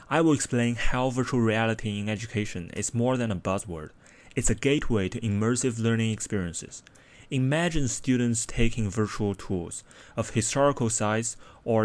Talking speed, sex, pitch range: 145 wpm, male, 100-120 Hz